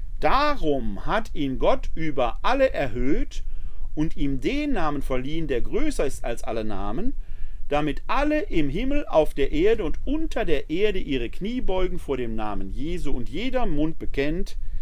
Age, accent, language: 40-59, German, German